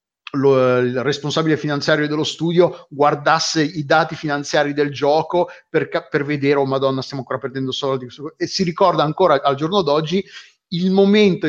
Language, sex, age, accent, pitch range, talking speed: Italian, male, 30-49, native, 135-175 Hz, 150 wpm